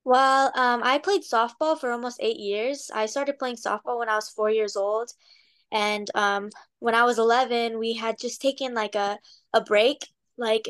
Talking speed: 190 wpm